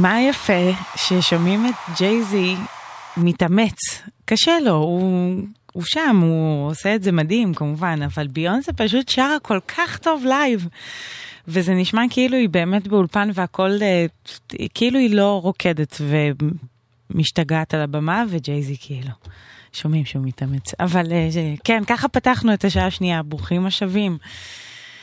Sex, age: female, 20-39